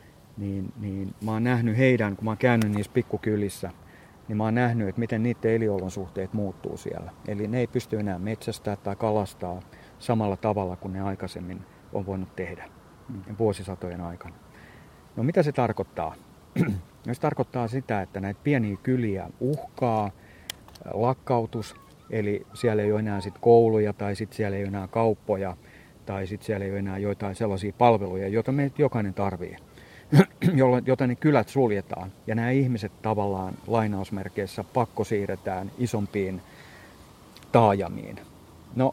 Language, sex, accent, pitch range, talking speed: Finnish, male, native, 100-120 Hz, 145 wpm